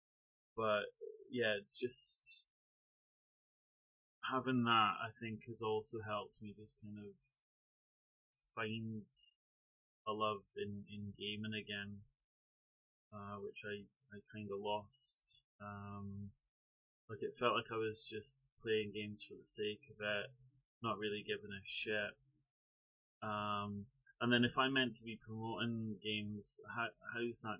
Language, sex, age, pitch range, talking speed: English, male, 20-39, 105-115 Hz, 135 wpm